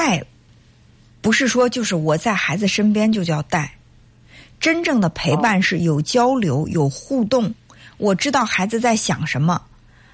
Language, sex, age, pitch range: Chinese, female, 50-69, 170-245 Hz